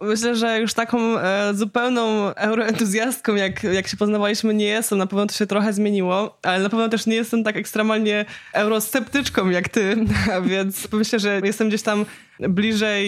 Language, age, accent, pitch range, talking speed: Polish, 20-39, native, 205-235 Hz, 165 wpm